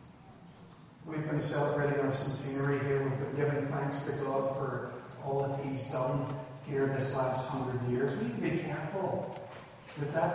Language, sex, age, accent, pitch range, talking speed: English, male, 50-69, American, 125-150 Hz, 170 wpm